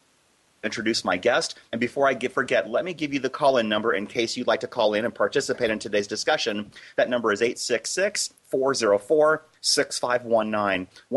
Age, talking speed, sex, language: 30-49, 160 wpm, male, English